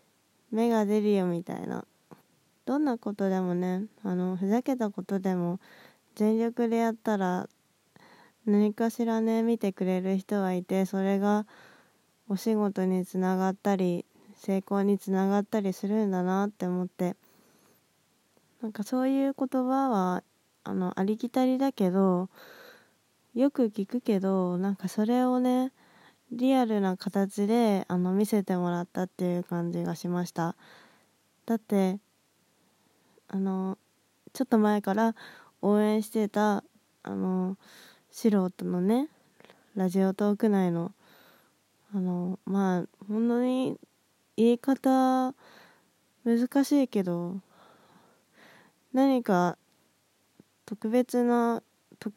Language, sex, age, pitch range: Japanese, female, 20-39, 185-235 Hz